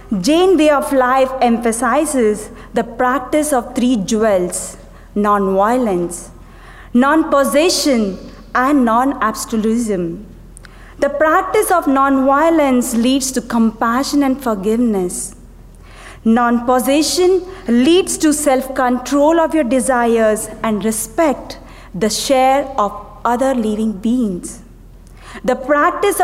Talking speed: 90 wpm